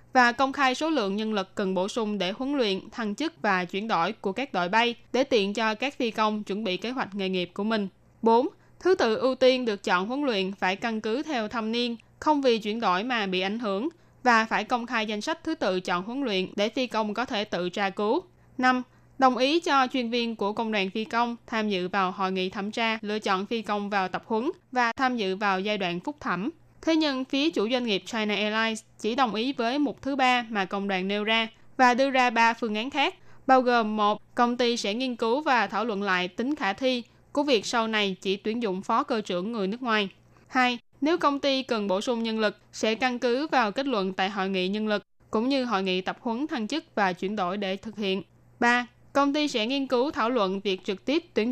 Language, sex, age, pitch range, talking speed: Vietnamese, female, 10-29, 200-255 Hz, 245 wpm